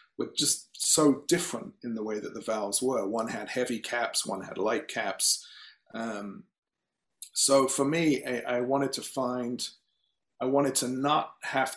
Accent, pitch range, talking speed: British, 120-145 Hz, 170 wpm